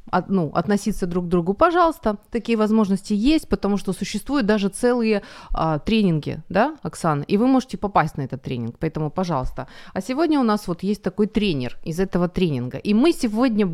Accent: native